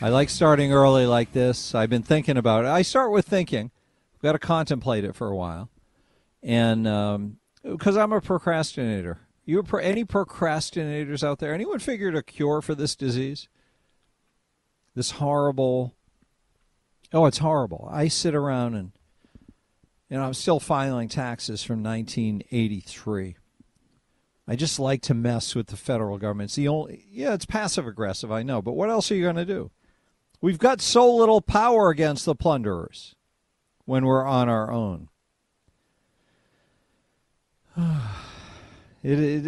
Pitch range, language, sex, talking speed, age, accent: 110-160 Hz, English, male, 150 wpm, 50-69, American